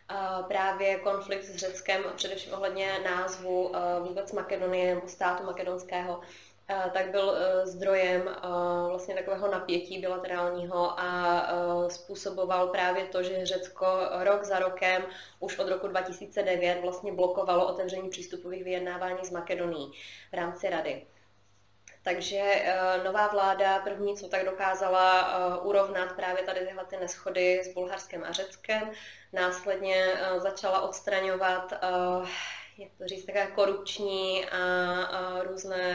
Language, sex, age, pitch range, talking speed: Czech, female, 20-39, 180-190 Hz, 120 wpm